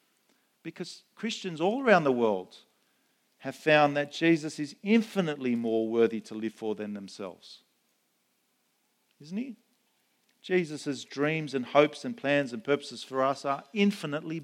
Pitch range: 120-190 Hz